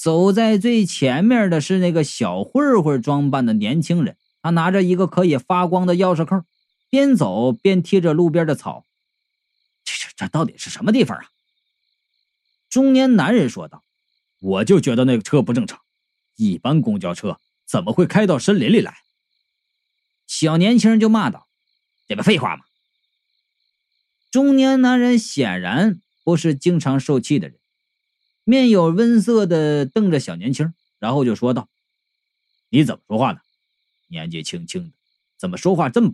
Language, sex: Chinese, male